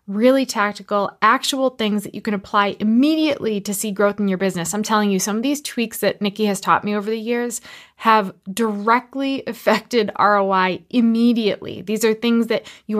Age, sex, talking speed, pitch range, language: 20-39, female, 185 wpm, 195-235 Hz, English